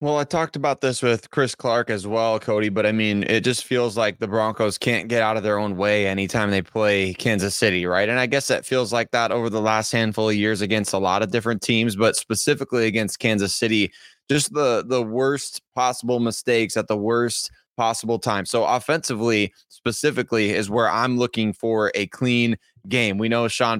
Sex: male